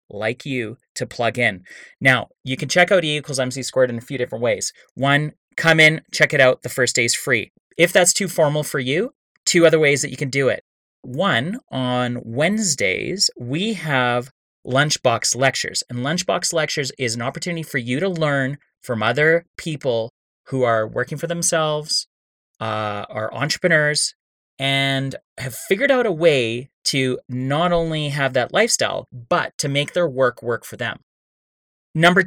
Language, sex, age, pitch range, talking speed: English, male, 30-49, 125-165 Hz, 175 wpm